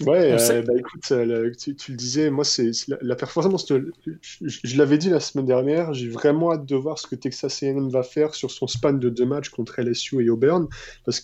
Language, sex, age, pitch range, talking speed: French, male, 20-39, 125-145 Hz, 245 wpm